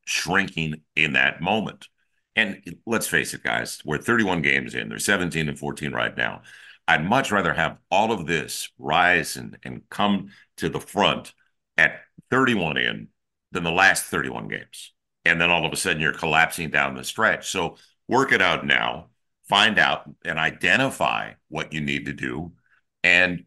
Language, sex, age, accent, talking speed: English, male, 60-79, American, 170 wpm